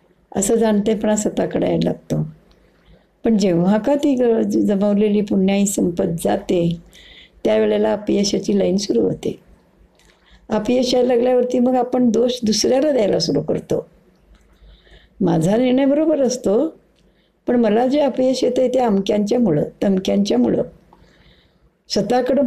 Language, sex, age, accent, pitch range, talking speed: Marathi, female, 60-79, native, 205-255 Hz, 110 wpm